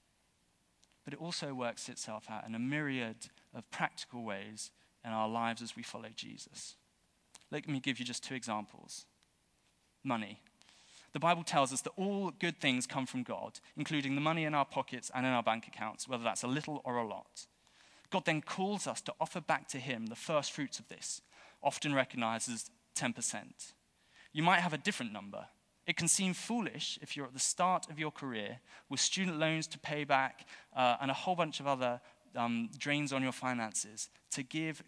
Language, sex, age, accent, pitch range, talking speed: English, male, 20-39, British, 120-155 Hz, 195 wpm